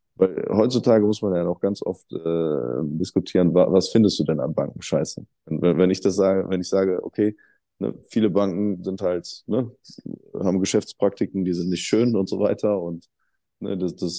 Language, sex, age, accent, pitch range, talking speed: German, male, 20-39, German, 85-95 Hz, 195 wpm